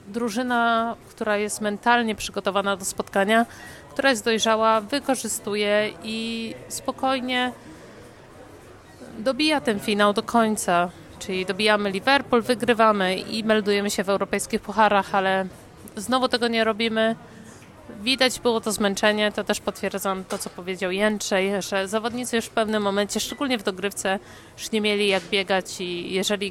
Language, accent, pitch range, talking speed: Polish, native, 200-235 Hz, 135 wpm